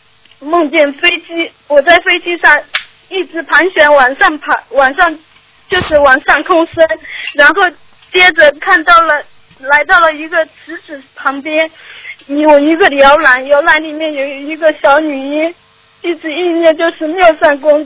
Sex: female